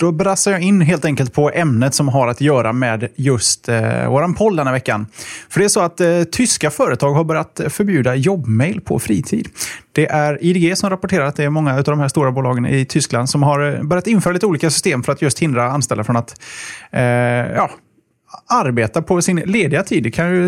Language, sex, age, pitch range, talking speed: Swedish, male, 20-39, 125-165 Hz, 215 wpm